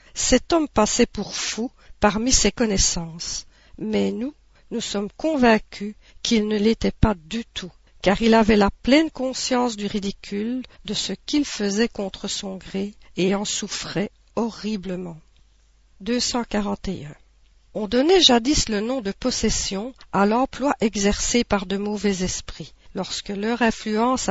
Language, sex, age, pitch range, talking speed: French, female, 50-69, 195-245 Hz, 140 wpm